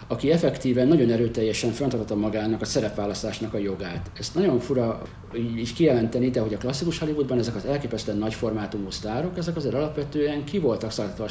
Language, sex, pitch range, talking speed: Hungarian, male, 105-130 Hz, 165 wpm